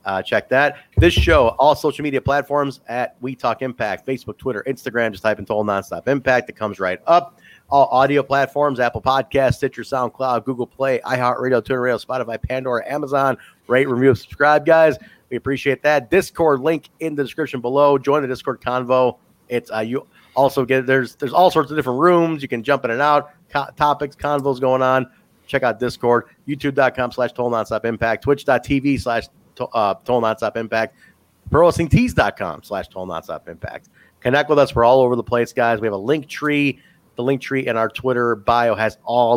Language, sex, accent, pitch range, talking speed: English, male, American, 120-145 Hz, 185 wpm